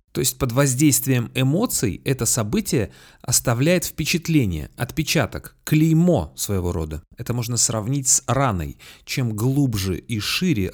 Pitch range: 105-145 Hz